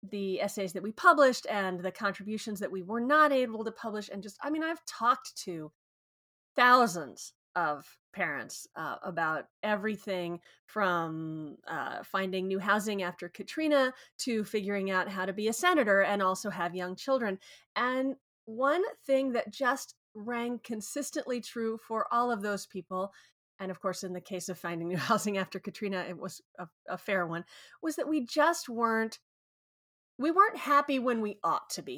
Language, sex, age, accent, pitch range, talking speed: English, female, 30-49, American, 190-260 Hz, 175 wpm